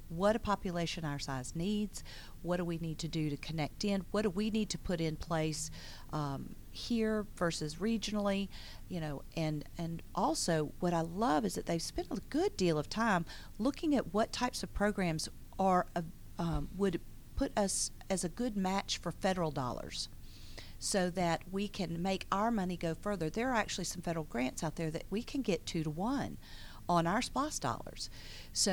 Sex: female